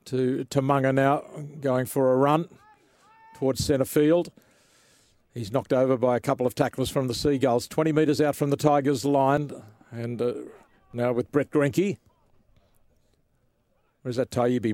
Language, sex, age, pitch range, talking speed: English, male, 50-69, 145-220 Hz, 155 wpm